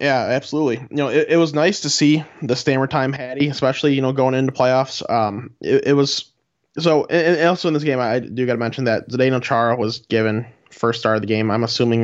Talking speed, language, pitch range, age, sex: 235 wpm, English, 115-140 Hz, 20-39, male